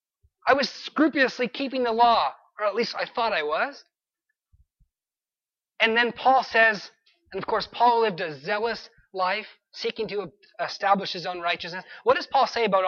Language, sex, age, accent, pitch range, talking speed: English, male, 30-49, American, 190-250 Hz, 170 wpm